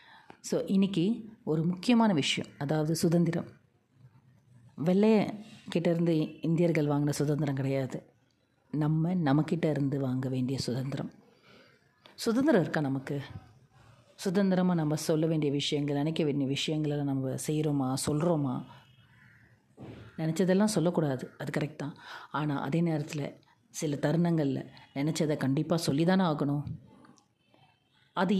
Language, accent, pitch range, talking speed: Tamil, native, 140-180 Hz, 100 wpm